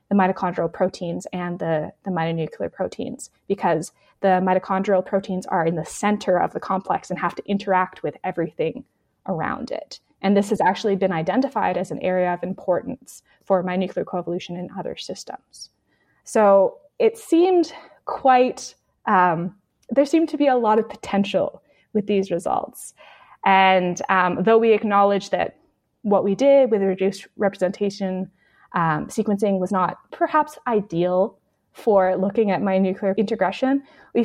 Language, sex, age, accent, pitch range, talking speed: English, female, 20-39, American, 185-225 Hz, 150 wpm